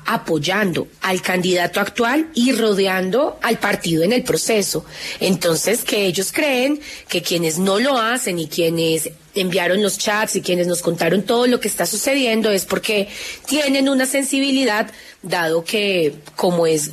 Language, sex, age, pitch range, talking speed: Spanish, female, 30-49, 175-235 Hz, 150 wpm